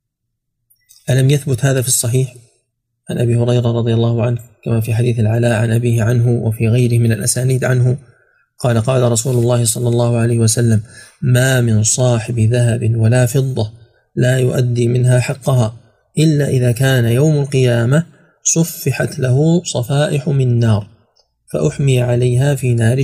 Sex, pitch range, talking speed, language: male, 115-140 Hz, 145 wpm, Arabic